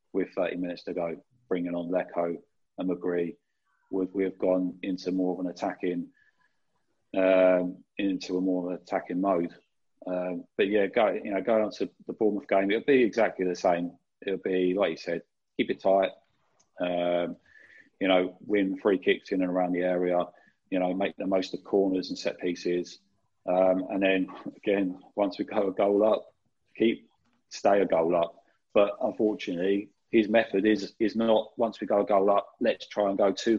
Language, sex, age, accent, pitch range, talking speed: English, male, 40-59, British, 90-100 Hz, 185 wpm